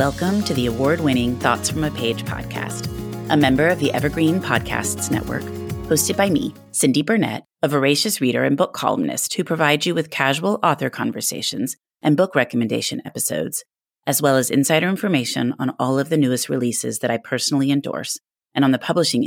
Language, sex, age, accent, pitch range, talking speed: English, female, 30-49, American, 120-155 Hz, 180 wpm